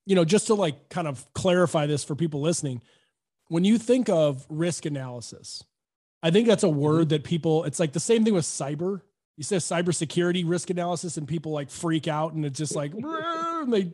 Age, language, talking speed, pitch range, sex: 30-49, English, 200 wpm, 155-185 Hz, male